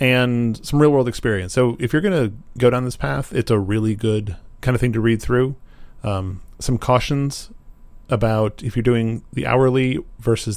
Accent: American